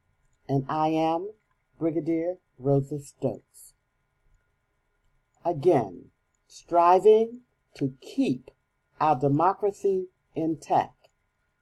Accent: American